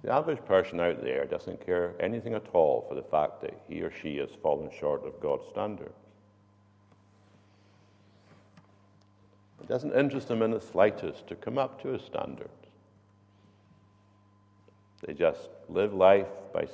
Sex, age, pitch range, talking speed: male, 60-79, 100-105 Hz, 145 wpm